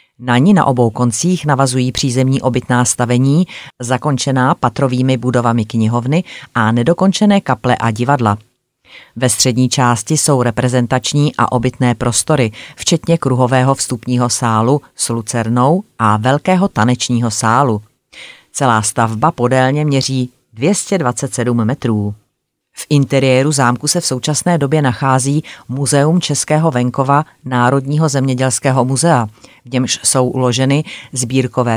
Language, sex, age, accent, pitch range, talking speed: Czech, female, 30-49, native, 120-145 Hz, 115 wpm